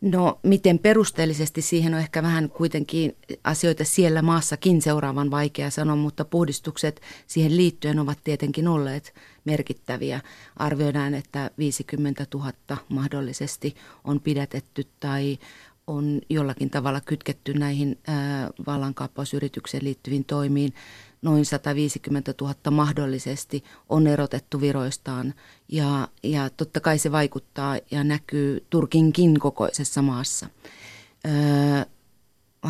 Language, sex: Finnish, female